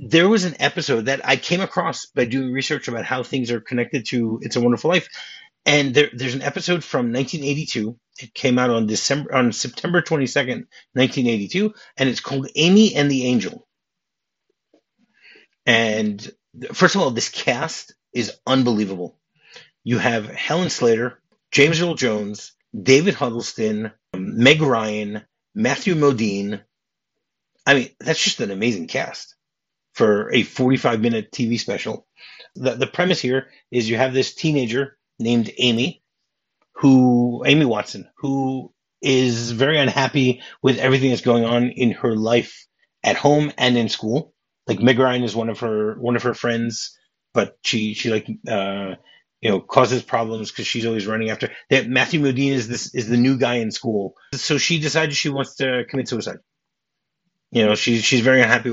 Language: English